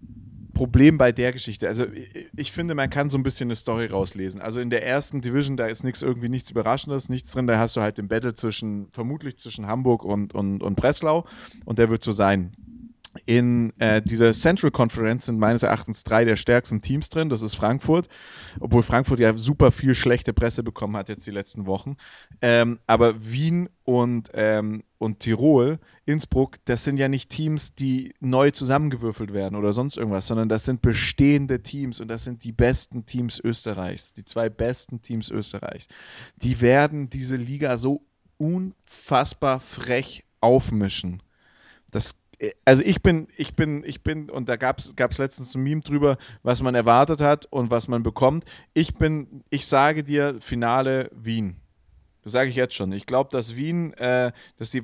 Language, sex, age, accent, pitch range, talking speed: German, male, 30-49, German, 115-135 Hz, 180 wpm